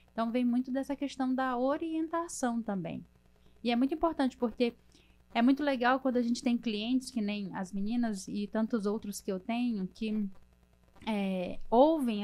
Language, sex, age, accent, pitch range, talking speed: Portuguese, female, 10-29, Brazilian, 195-230 Hz, 160 wpm